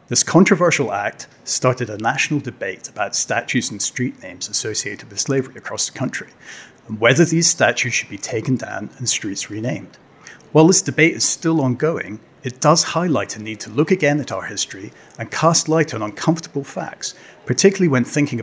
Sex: male